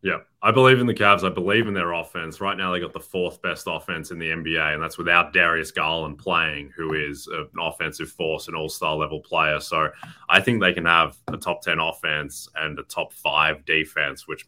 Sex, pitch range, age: male, 80-95 Hz, 20-39